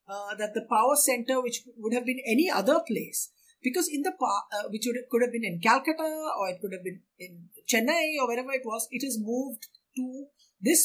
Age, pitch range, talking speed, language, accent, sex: 50-69, 185-255 Hz, 230 wpm, English, Indian, female